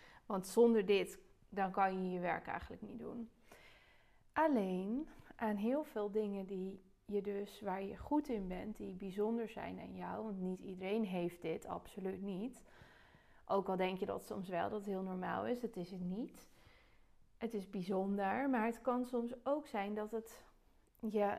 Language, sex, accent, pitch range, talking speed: Dutch, female, Dutch, 195-235 Hz, 180 wpm